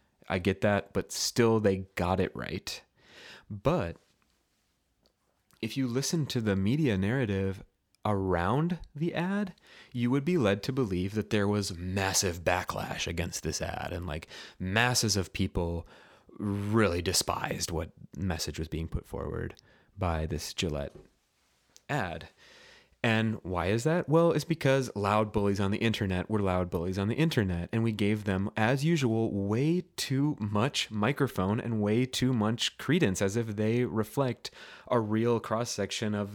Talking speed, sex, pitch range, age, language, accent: 150 wpm, male, 100-125 Hz, 30-49, English, American